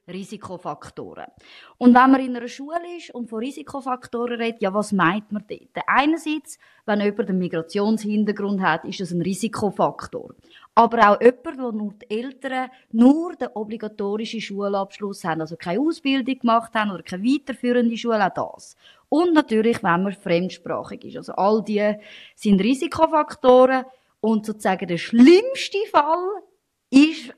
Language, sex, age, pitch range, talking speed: German, female, 20-39, 195-255 Hz, 145 wpm